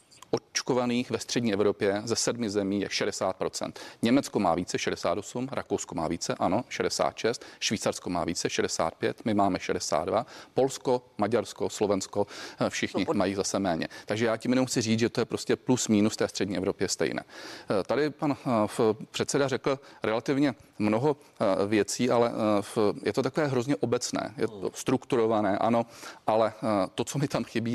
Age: 40-59